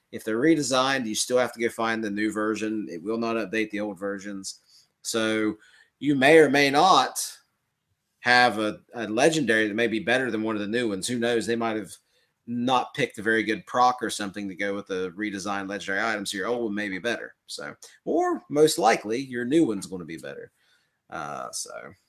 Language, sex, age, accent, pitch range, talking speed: English, male, 30-49, American, 105-125 Hz, 210 wpm